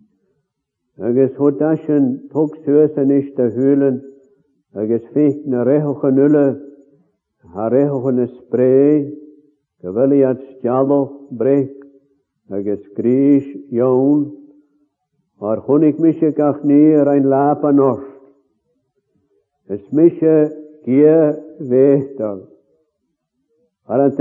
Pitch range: 135-150 Hz